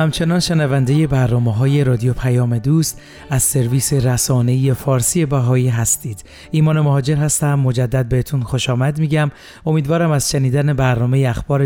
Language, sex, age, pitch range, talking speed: Persian, male, 40-59, 130-155 Hz, 140 wpm